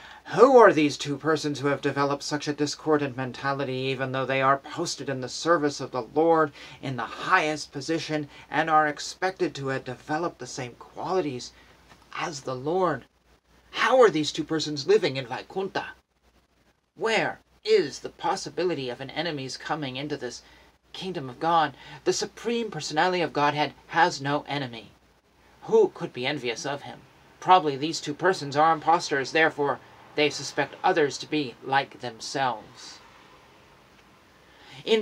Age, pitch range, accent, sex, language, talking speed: 40-59, 135-155 Hz, American, male, English, 155 wpm